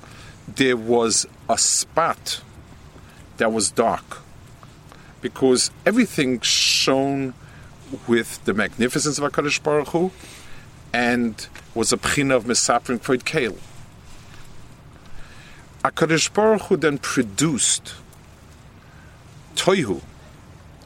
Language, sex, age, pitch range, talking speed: English, male, 50-69, 115-145 Hz, 90 wpm